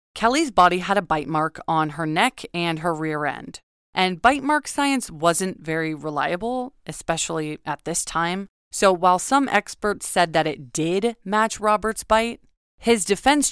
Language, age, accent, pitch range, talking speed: English, 20-39, American, 160-220 Hz, 165 wpm